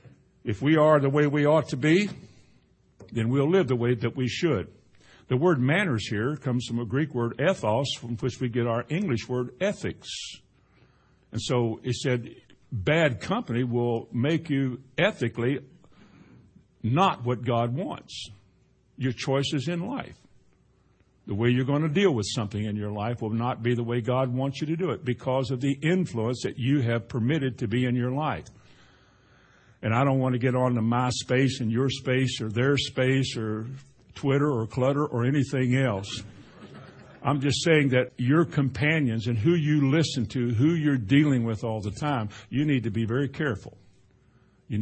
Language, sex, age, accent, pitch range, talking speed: English, male, 60-79, American, 115-140 Hz, 185 wpm